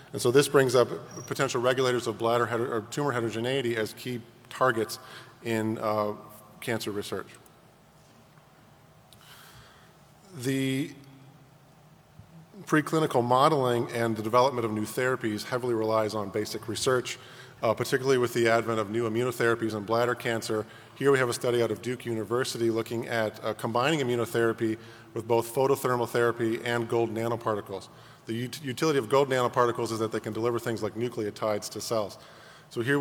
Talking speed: 150 wpm